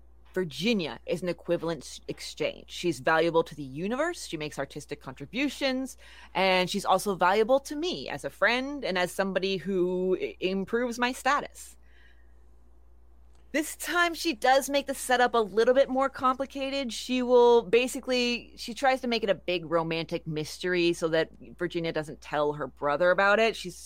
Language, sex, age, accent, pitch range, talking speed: English, female, 30-49, American, 165-255 Hz, 160 wpm